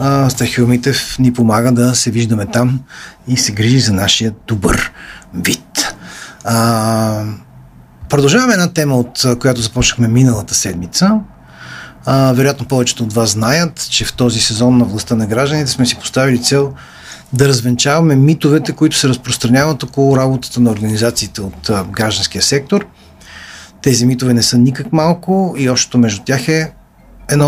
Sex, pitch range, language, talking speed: male, 115-135 Hz, Bulgarian, 140 wpm